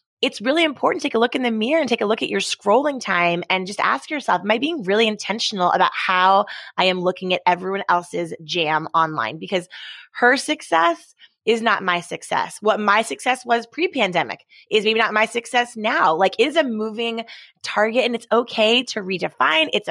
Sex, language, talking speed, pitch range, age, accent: female, English, 200 wpm, 185-250 Hz, 20-39, American